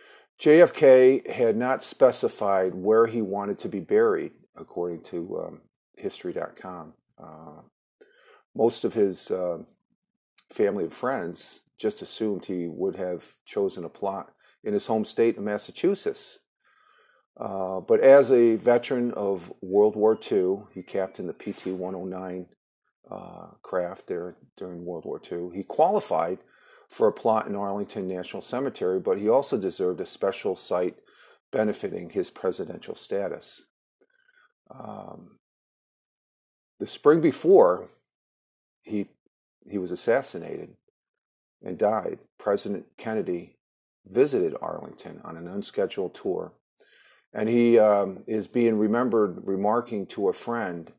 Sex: male